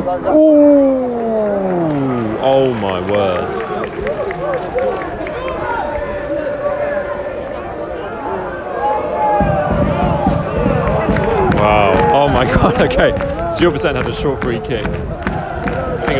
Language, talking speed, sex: English, 65 wpm, male